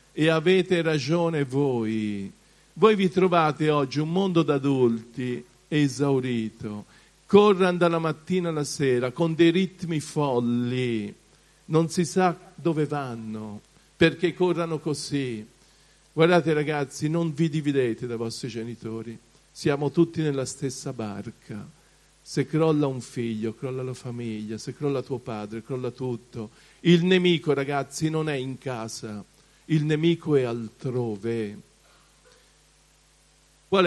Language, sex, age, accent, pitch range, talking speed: Italian, male, 50-69, native, 120-160 Hz, 120 wpm